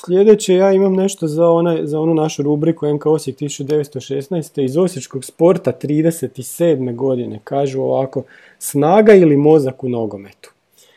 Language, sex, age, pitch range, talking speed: Croatian, male, 40-59, 140-180 Hz, 135 wpm